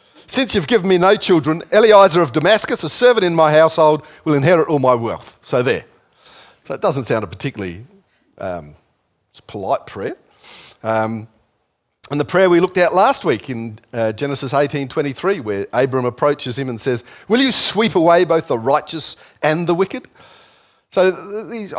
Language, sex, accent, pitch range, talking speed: English, male, Australian, 115-165 Hz, 170 wpm